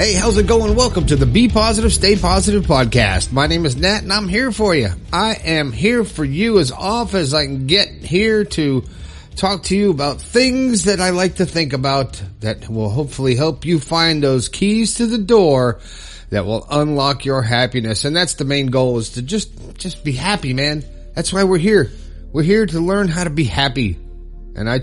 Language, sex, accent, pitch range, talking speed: English, male, American, 130-185 Hz, 210 wpm